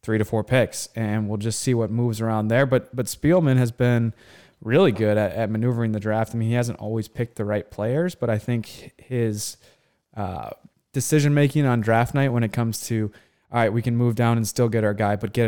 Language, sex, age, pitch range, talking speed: English, male, 20-39, 105-120 Hz, 230 wpm